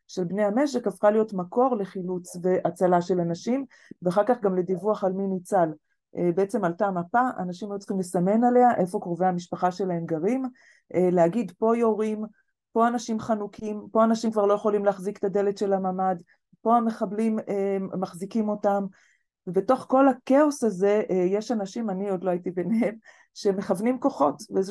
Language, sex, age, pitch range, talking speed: Hebrew, female, 30-49, 185-230 Hz, 155 wpm